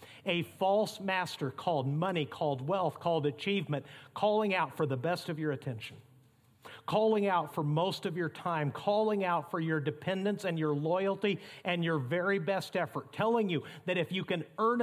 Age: 50-69